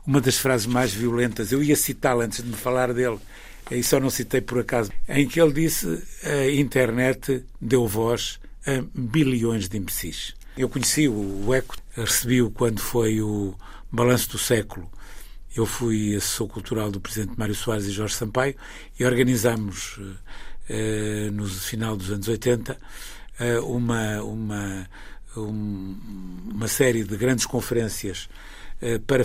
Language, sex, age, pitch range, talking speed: Portuguese, male, 60-79, 105-130 Hz, 145 wpm